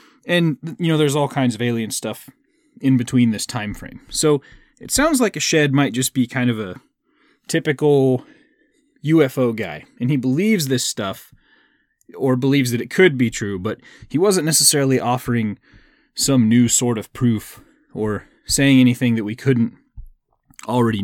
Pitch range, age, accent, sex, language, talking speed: 110-145 Hz, 30-49, American, male, English, 165 wpm